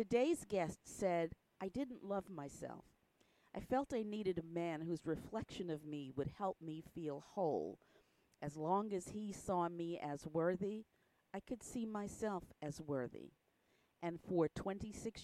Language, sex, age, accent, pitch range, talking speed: English, female, 40-59, American, 155-205 Hz, 155 wpm